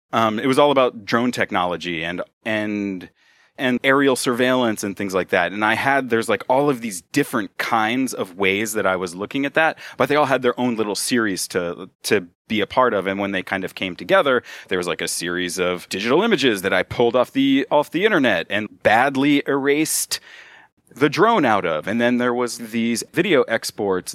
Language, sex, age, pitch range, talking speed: English, male, 30-49, 105-130 Hz, 210 wpm